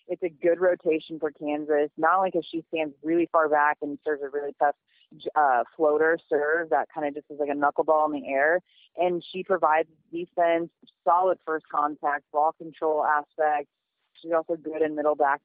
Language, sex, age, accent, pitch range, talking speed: English, female, 30-49, American, 150-175 Hz, 190 wpm